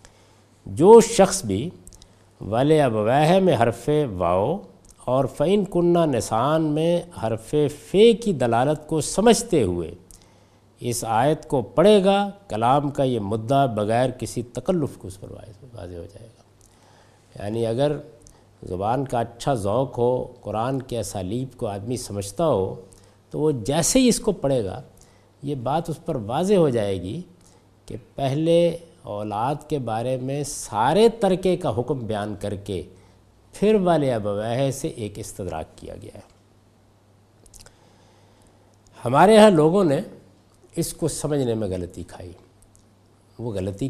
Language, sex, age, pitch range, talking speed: Urdu, male, 60-79, 100-155 Hz, 140 wpm